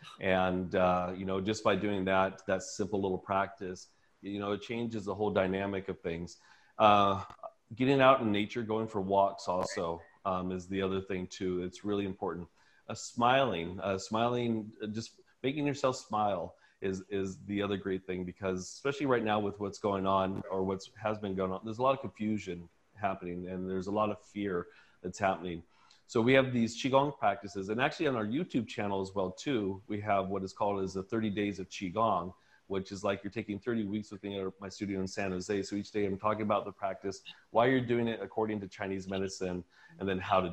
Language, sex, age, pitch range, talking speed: English, male, 30-49, 95-110 Hz, 210 wpm